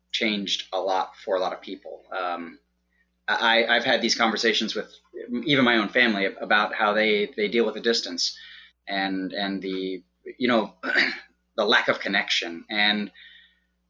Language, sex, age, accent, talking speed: English, male, 20-39, American, 160 wpm